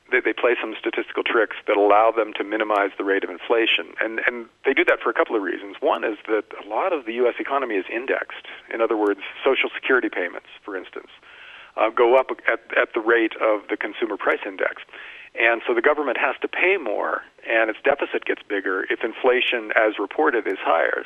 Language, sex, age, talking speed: English, male, 40-59, 210 wpm